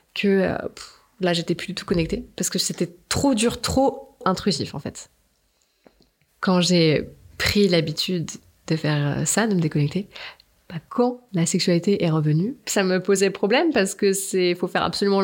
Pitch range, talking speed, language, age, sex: 175-215 Hz, 170 wpm, French, 20-39, female